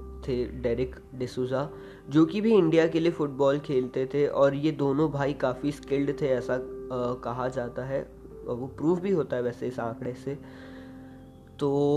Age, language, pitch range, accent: 20-39, Hindi, 125-155 Hz, native